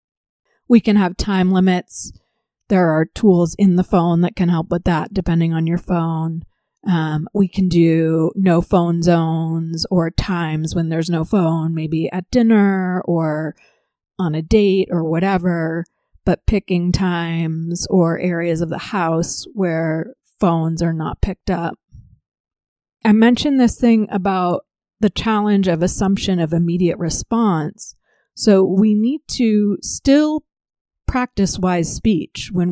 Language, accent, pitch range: English, American, 165-205 Hz